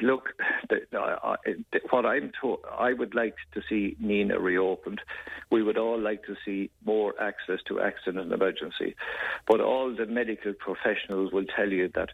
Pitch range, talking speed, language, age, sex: 100-120 Hz, 150 wpm, English, 60-79, male